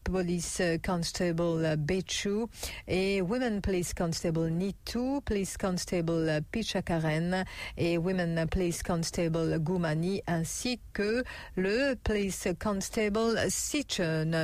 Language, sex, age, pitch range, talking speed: English, female, 50-69, 165-200 Hz, 90 wpm